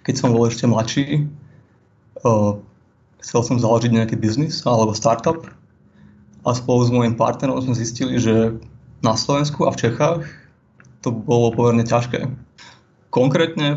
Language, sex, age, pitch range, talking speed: Slovak, male, 20-39, 115-135 Hz, 135 wpm